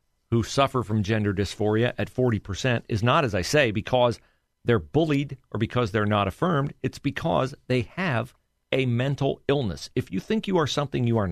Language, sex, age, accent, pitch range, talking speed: English, male, 50-69, American, 110-140 Hz, 185 wpm